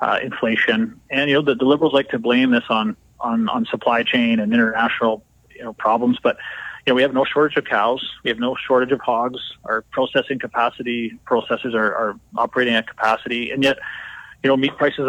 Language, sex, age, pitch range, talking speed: English, male, 30-49, 115-140 Hz, 205 wpm